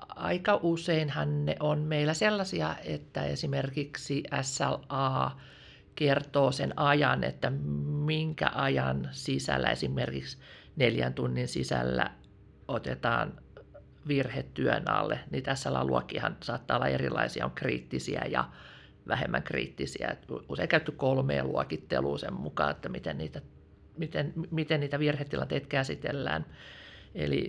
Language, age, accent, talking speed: Finnish, 50-69, native, 110 wpm